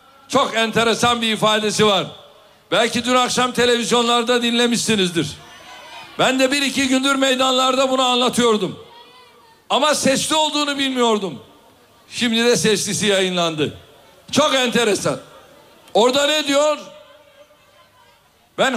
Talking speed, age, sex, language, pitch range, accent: 100 wpm, 60-79, male, Turkish, 215-290 Hz, native